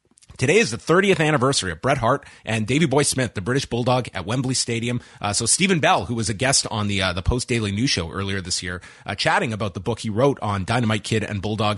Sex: male